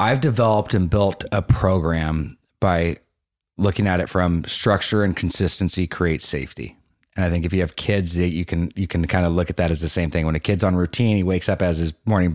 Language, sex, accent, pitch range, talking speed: English, male, American, 80-95 Hz, 235 wpm